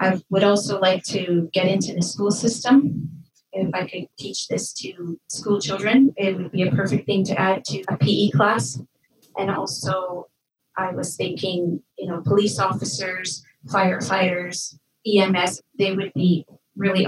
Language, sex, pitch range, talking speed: English, female, 175-205 Hz, 160 wpm